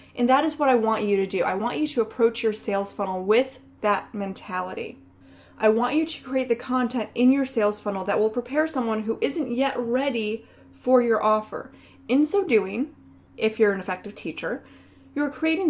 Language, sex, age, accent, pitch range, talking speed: English, female, 20-39, American, 205-260 Hz, 200 wpm